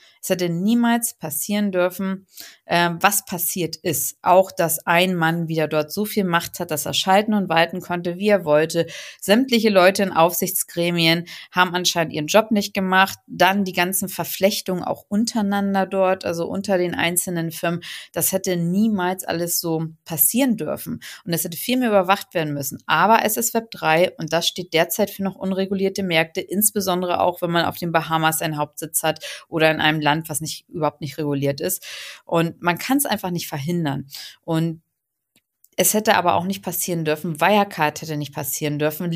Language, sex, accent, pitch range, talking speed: German, female, German, 165-200 Hz, 180 wpm